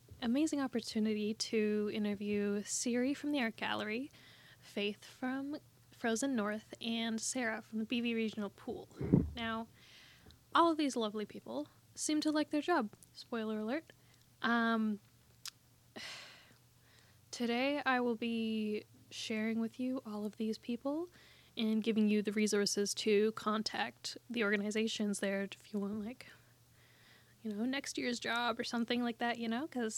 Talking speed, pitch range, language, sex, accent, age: 140 wpm, 215-250 Hz, English, female, American, 10-29